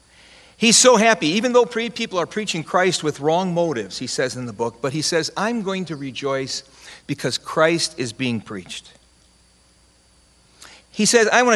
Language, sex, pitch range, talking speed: English, male, 115-170 Hz, 170 wpm